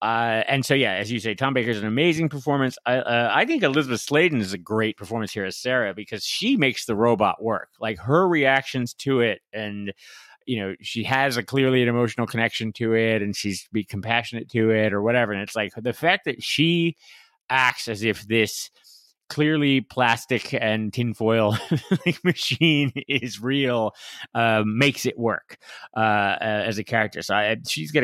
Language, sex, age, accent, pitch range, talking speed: English, male, 30-49, American, 105-130 Hz, 185 wpm